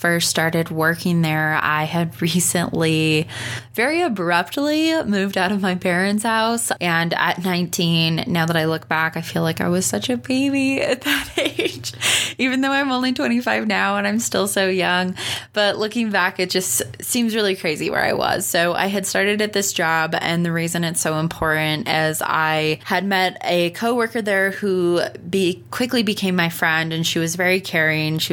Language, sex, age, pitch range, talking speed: English, female, 20-39, 160-205 Hz, 185 wpm